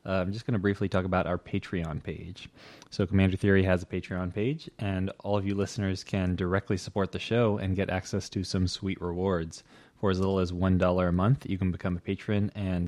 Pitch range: 90-110 Hz